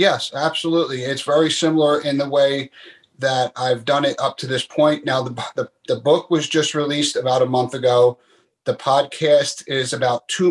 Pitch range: 120-150 Hz